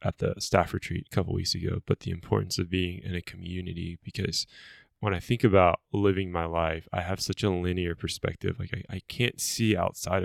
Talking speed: 215 wpm